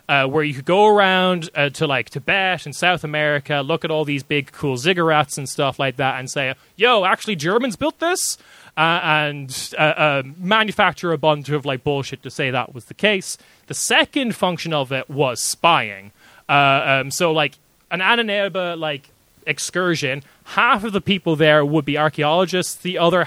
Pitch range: 135-175 Hz